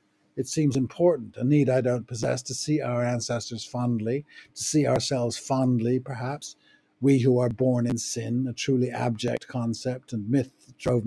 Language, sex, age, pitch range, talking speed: English, male, 60-79, 120-135 Hz, 175 wpm